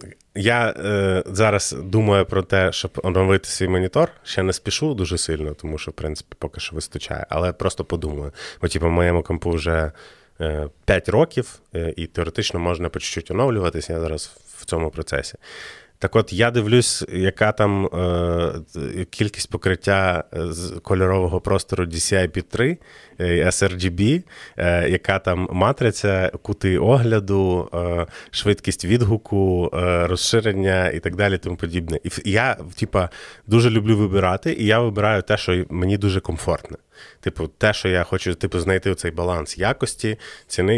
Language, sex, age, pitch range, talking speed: Ukrainian, male, 30-49, 85-105 Hz, 150 wpm